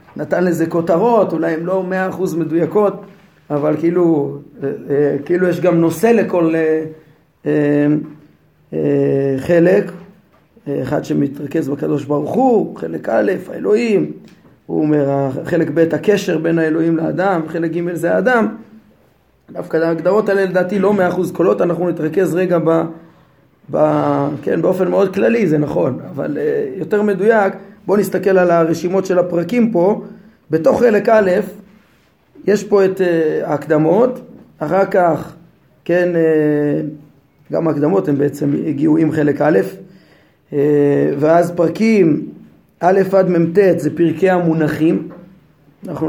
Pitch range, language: 155-195 Hz, Hebrew